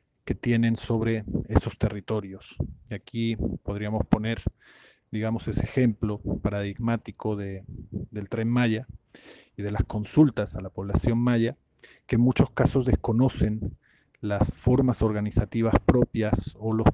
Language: Spanish